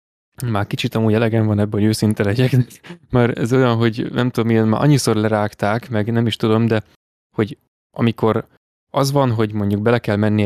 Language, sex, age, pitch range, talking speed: Hungarian, male, 20-39, 105-130 Hz, 190 wpm